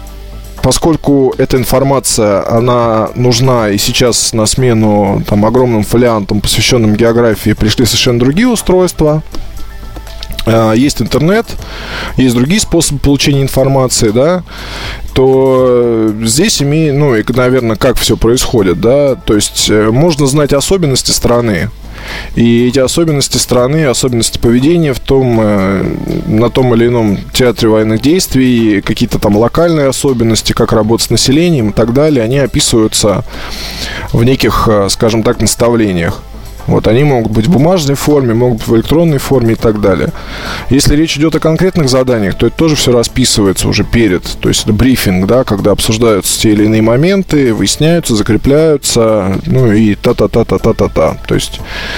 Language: Russian